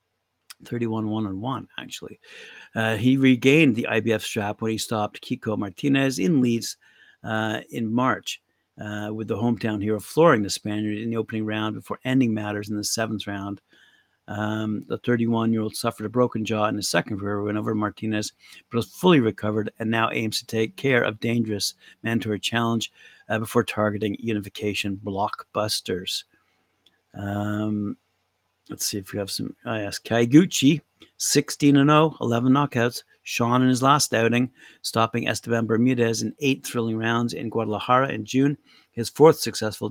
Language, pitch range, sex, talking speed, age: English, 105-120 Hz, male, 160 wpm, 50-69